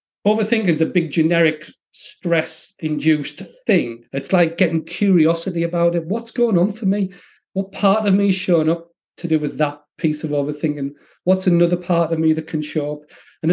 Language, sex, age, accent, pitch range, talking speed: English, male, 40-59, British, 150-190 Hz, 185 wpm